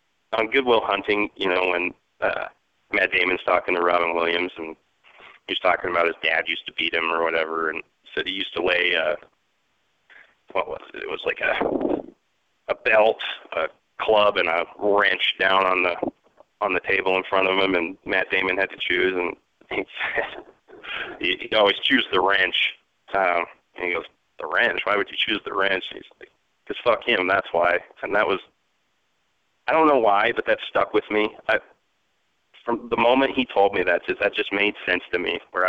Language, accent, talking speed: English, American, 195 wpm